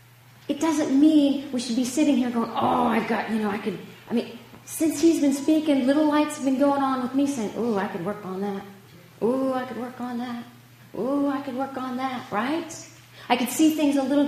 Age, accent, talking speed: 40-59, American, 235 wpm